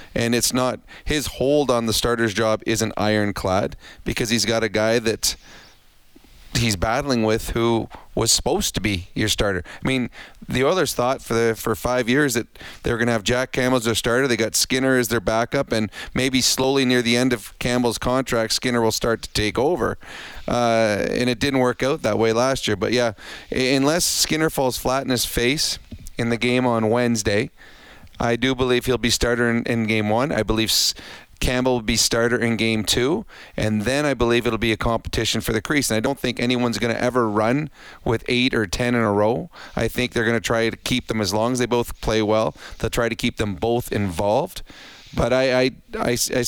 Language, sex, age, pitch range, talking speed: English, male, 30-49, 110-125 Hz, 215 wpm